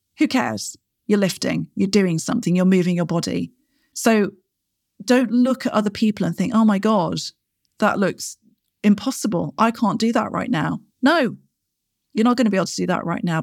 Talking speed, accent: 190 wpm, British